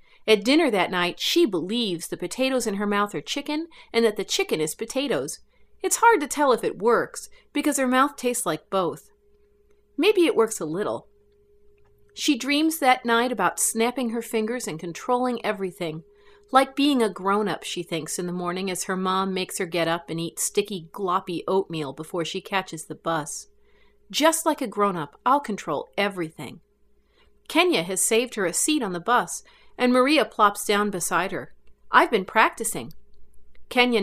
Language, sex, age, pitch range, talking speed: English, female, 40-59, 180-285 Hz, 175 wpm